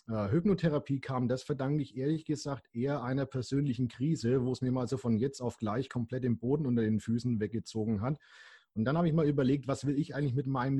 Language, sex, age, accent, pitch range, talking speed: German, male, 40-59, German, 120-150 Hz, 230 wpm